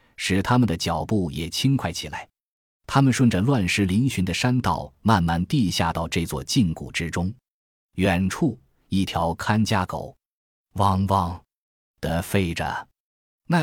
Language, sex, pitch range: Chinese, male, 85-115 Hz